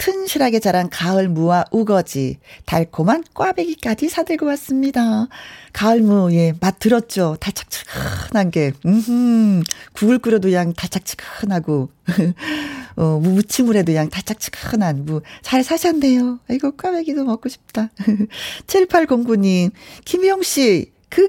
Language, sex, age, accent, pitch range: Korean, female, 40-59, native, 210-300 Hz